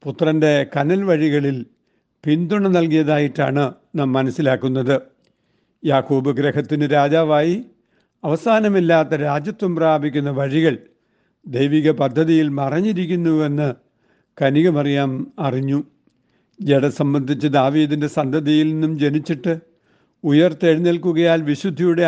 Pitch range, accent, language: 140-165 Hz, native, Malayalam